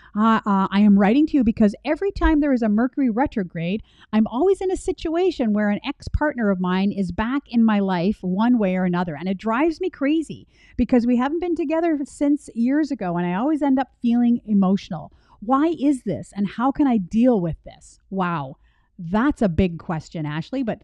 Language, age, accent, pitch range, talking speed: English, 40-59, American, 195-245 Hz, 205 wpm